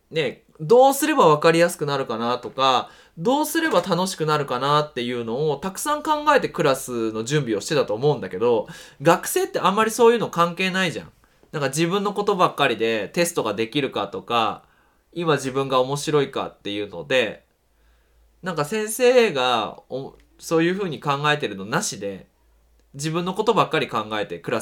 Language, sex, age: Japanese, male, 20-39